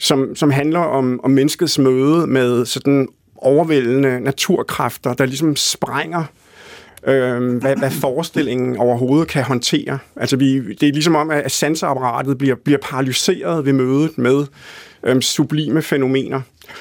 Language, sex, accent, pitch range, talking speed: Danish, male, native, 130-155 Hz, 130 wpm